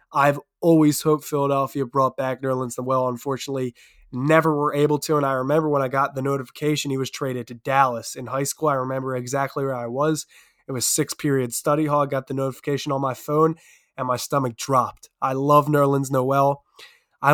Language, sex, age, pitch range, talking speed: English, male, 20-39, 135-155 Hz, 200 wpm